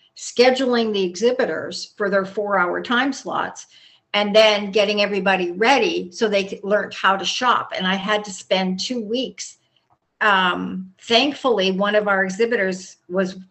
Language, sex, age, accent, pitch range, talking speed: English, female, 50-69, American, 185-220 Hz, 150 wpm